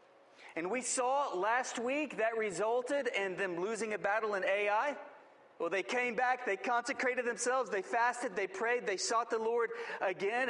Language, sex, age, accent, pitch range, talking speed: English, male, 40-59, American, 195-260 Hz, 170 wpm